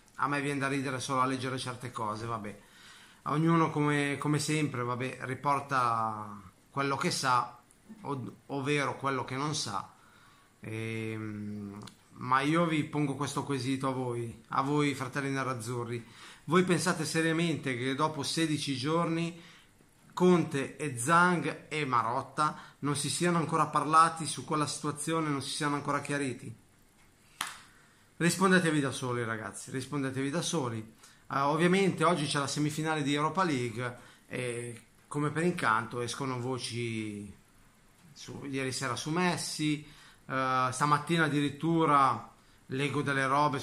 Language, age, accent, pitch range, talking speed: Italian, 30-49, native, 125-155 Hz, 130 wpm